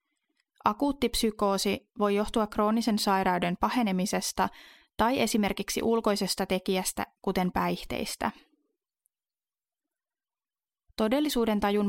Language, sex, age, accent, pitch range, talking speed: Finnish, female, 30-49, native, 195-250 Hz, 75 wpm